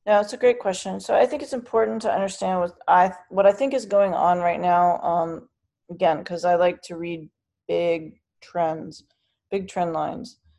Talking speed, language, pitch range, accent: 205 wpm, English, 165-195 Hz, American